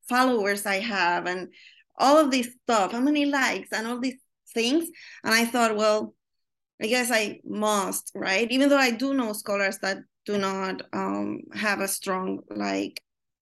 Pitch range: 195-250 Hz